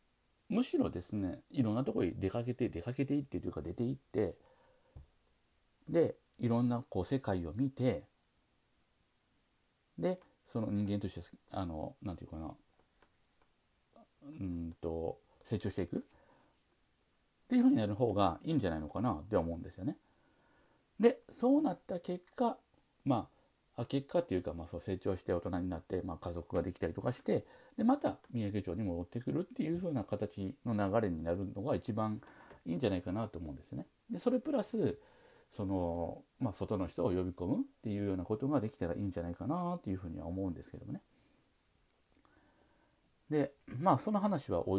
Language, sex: Japanese, male